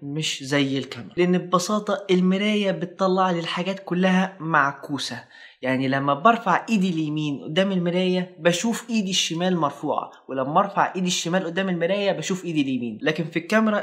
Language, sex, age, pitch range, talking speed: Arabic, male, 20-39, 175-235 Hz, 150 wpm